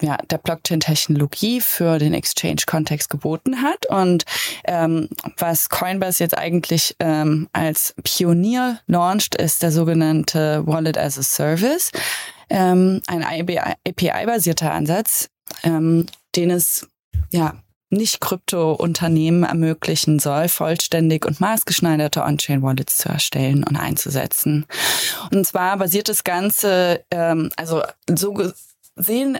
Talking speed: 110 wpm